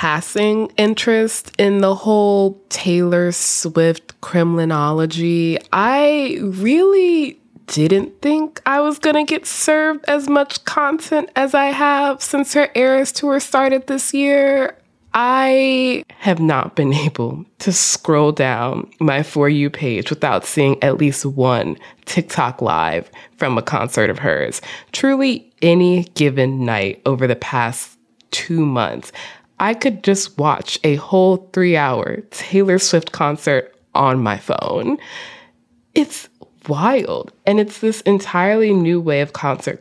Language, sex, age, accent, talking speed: English, female, 20-39, American, 130 wpm